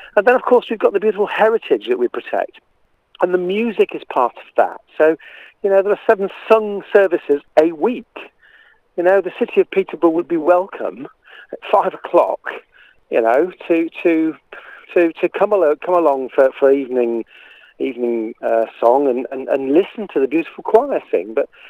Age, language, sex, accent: 50-69, English, male, British